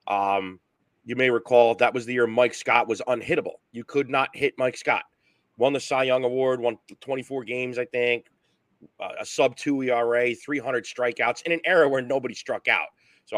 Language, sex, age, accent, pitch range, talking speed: English, male, 30-49, American, 120-160 Hz, 190 wpm